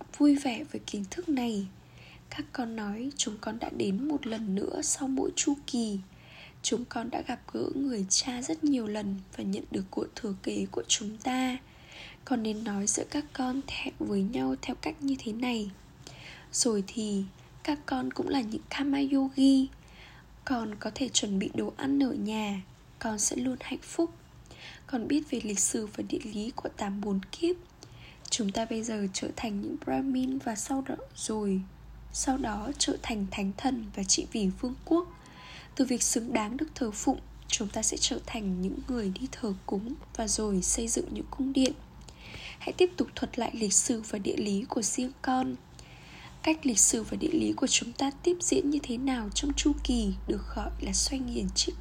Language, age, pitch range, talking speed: Vietnamese, 10-29, 215-280 Hz, 195 wpm